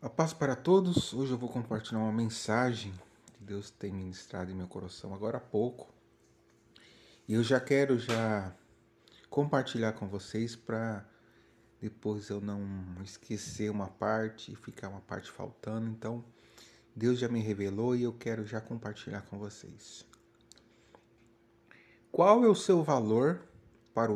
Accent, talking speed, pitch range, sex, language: Brazilian, 145 wpm, 105-150 Hz, male, Portuguese